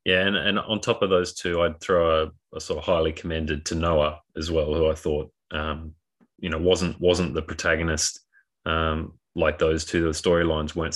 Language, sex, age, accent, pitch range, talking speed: English, male, 20-39, Australian, 75-85 Hz, 205 wpm